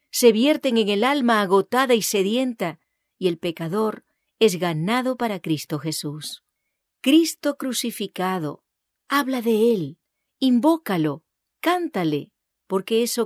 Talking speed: 115 wpm